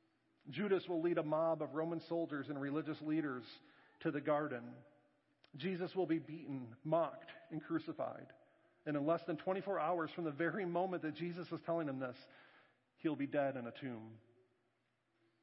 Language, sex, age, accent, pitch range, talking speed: English, male, 40-59, American, 145-180 Hz, 165 wpm